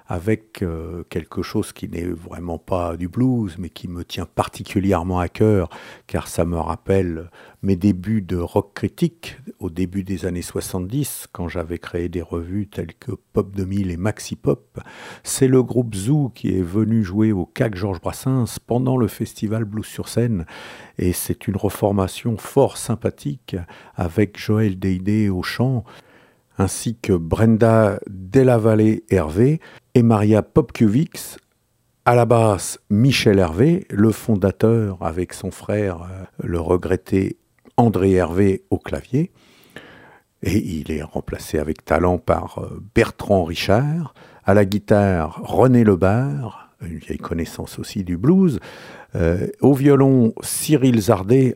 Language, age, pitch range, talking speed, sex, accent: French, 50-69, 90-115 Hz, 140 wpm, male, French